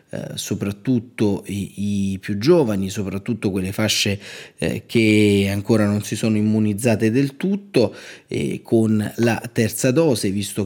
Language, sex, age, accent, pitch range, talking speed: Italian, male, 30-49, native, 100-120 Hz, 130 wpm